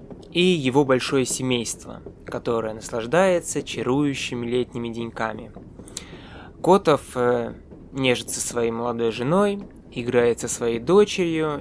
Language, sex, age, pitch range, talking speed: Russian, male, 20-39, 115-145 Hz, 95 wpm